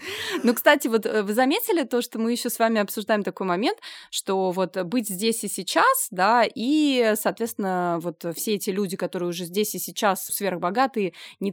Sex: female